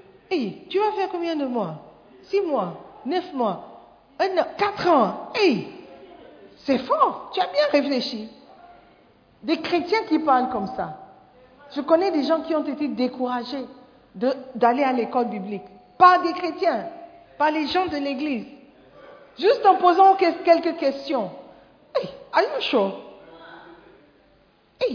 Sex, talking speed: female, 135 wpm